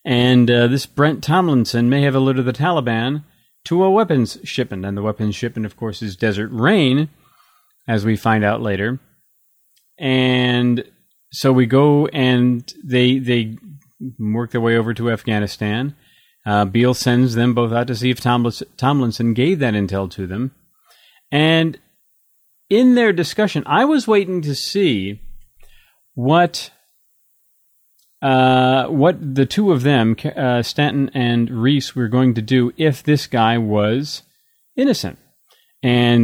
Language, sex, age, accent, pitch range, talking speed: English, male, 30-49, American, 115-150 Hz, 140 wpm